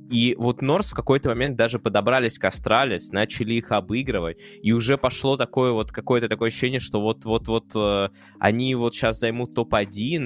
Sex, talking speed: male, 175 wpm